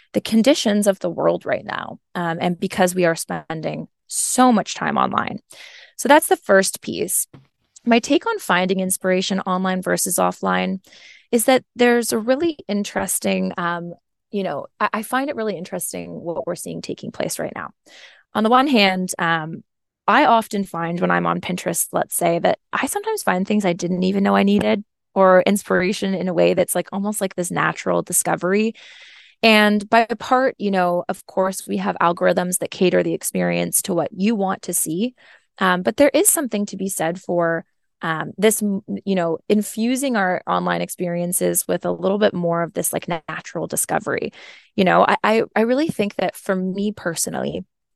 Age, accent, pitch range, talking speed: 20-39, American, 175-220 Hz, 185 wpm